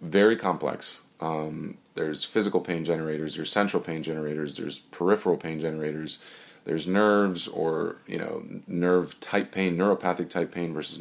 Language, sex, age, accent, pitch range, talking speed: English, male, 30-49, American, 80-95 Hz, 145 wpm